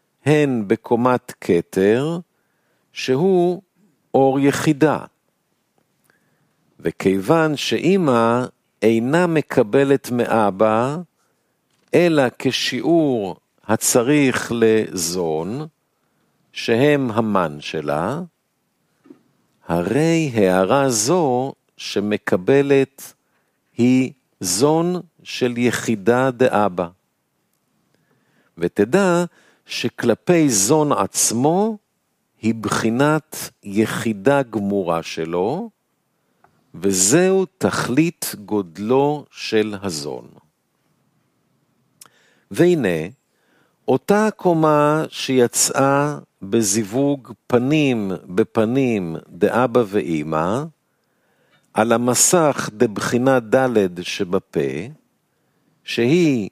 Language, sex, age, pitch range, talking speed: Hebrew, male, 50-69, 110-155 Hz, 60 wpm